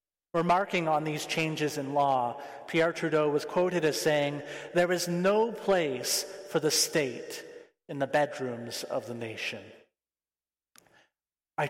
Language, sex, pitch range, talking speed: English, male, 145-195 Hz, 135 wpm